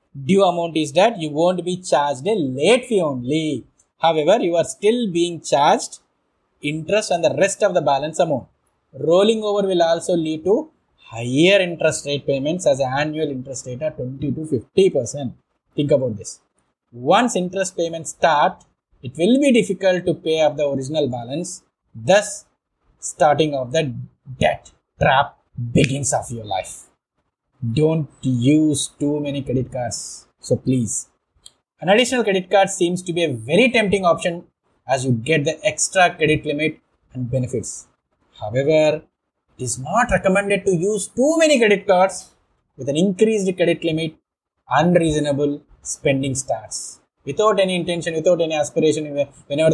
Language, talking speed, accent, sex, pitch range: English, 150 wpm, Indian, male, 140-185 Hz